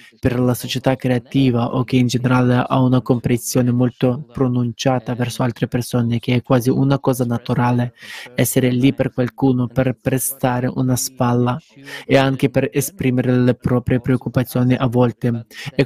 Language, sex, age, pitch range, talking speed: Italian, male, 20-39, 125-135 Hz, 150 wpm